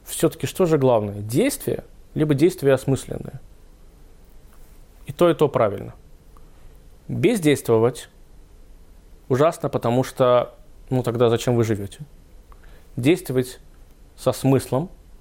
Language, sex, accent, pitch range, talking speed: Russian, male, native, 90-135 Hz, 100 wpm